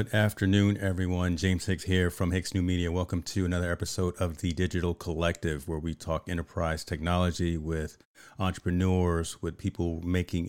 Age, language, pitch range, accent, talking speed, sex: 40-59, English, 80-90 Hz, American, 160 wpm, male